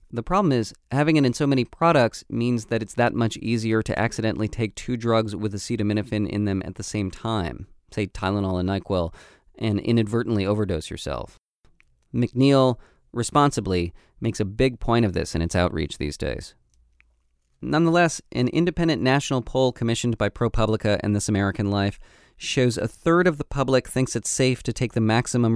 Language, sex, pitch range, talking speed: English, male, 100-125 Hz, 175 wpm